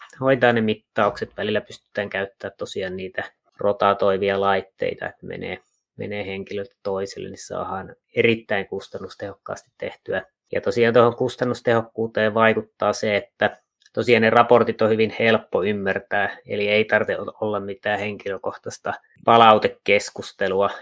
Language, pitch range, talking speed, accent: Finnish, 100-130 Hz, 120 wpm, native